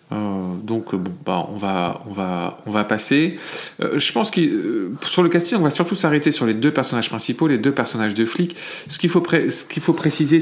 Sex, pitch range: male, 105-145 Hz